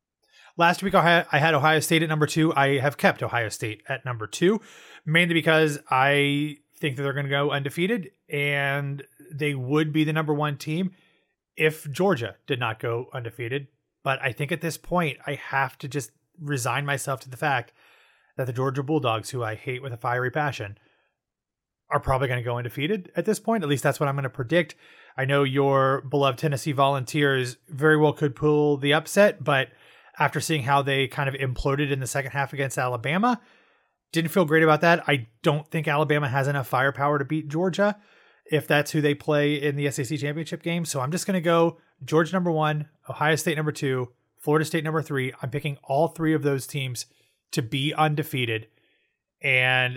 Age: 30-49